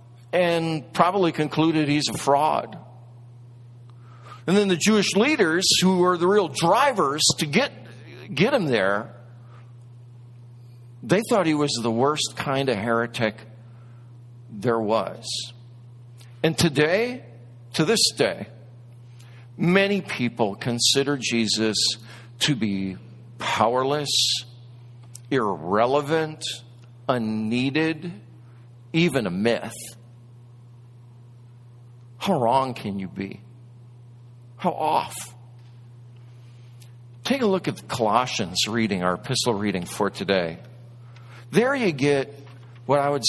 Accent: American